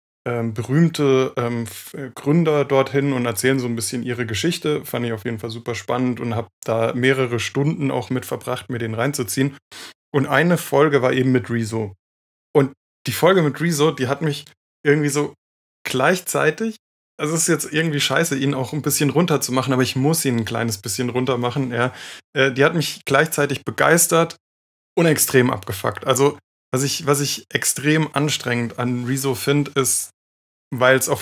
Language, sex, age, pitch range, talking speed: German, male, 20-39, 120-145 Hz, 180 wpm